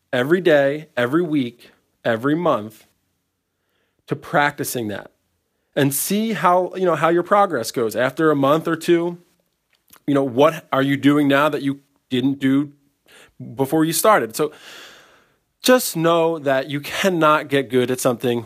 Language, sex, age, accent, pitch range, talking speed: English, male, 20-39, American, 120-155 Hz, 155 wpm